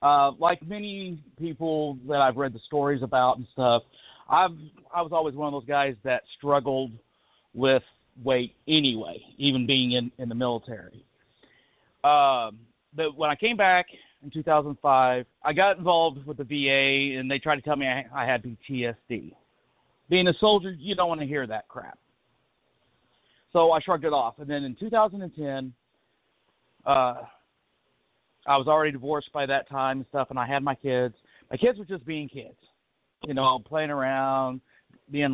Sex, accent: male, American